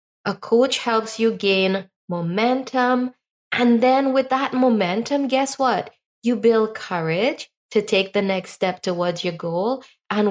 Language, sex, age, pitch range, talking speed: English, female, 20-39, 185-240 Hz, 145 wpm